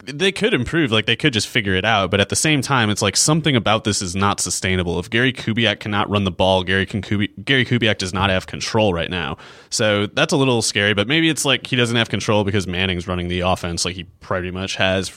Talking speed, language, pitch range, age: 255 wpm, English, 95-115 Hz, 30-49